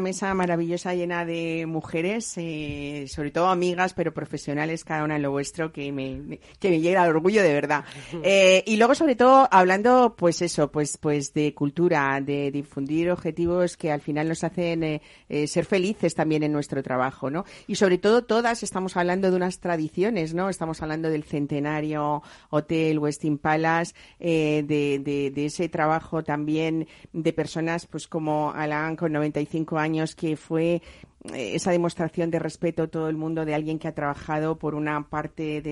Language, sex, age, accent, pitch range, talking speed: Spanish, female, 50-69, Spanish, 150-180 Hz, 180 wpm